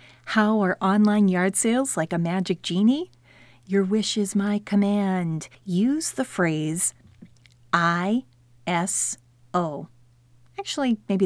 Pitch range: 165-215 Hz